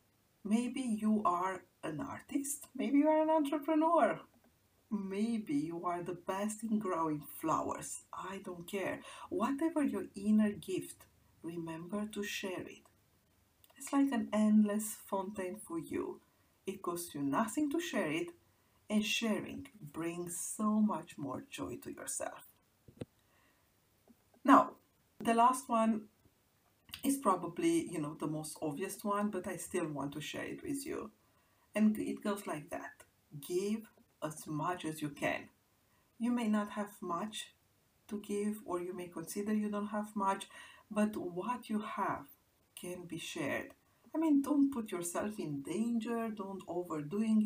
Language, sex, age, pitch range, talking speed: English, female, 50-69, 180-235 Hz, 145 wpm